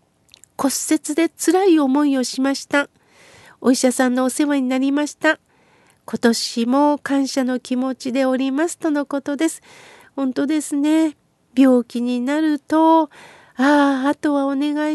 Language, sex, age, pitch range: Japanese, female, 50-69, 255-310 Hz